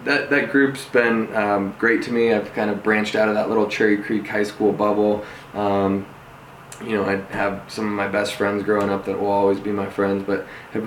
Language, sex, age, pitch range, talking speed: English, male, 20-39, 100-110 Hz, 225 wpm